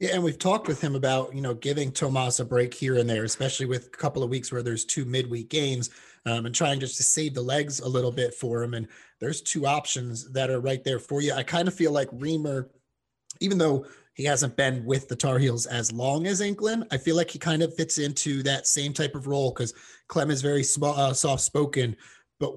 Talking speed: 240 wpm